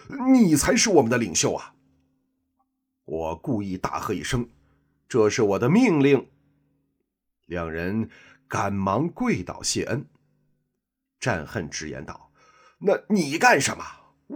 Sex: male